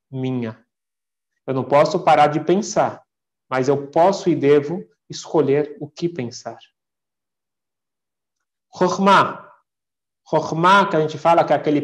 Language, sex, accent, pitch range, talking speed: Portuguese, male, Brazilian, 135-175 Hz, 125 wpm